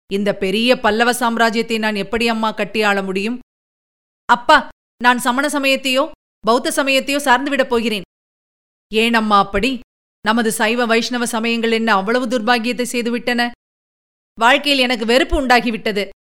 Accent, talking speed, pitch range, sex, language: native, 120 wpm, 215-260 Hz, female, Tamil